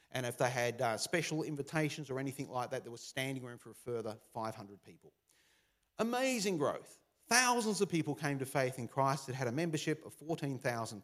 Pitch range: 120-165 Hz